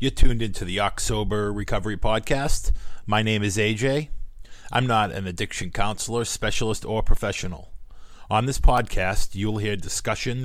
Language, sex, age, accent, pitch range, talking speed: English, male, 40-59, American, 95-110 Hz, 145 wpm